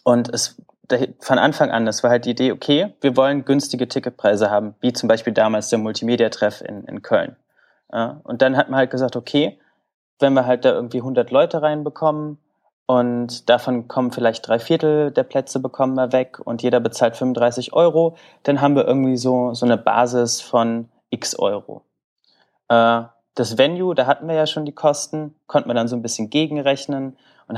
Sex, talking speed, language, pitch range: male, 185 wpm, German, 115-130 Hz